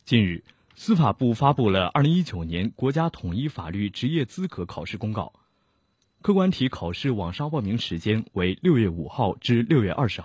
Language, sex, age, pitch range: Chinese, male, 30-49, 95-150 Hz